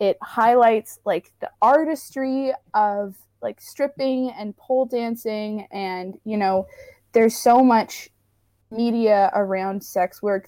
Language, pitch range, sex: English, 185-225 Hz, female